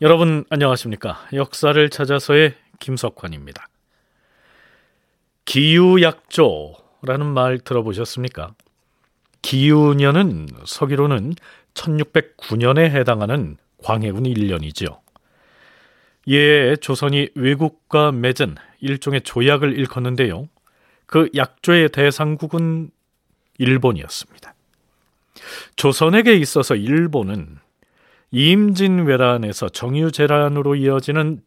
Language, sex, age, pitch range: Korean, male, 40-59, 125-155 Hz